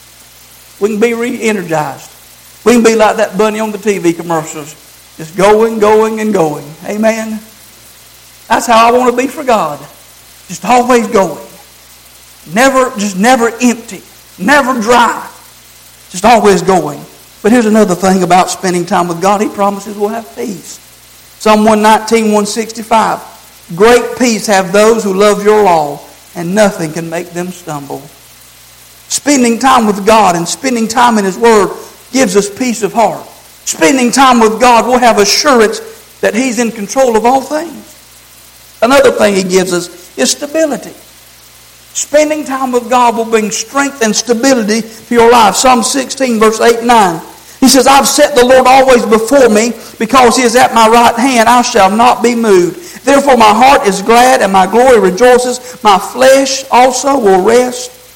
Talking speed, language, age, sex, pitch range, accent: 165 wpm, English, 50-69, male, 190-245 Hz, American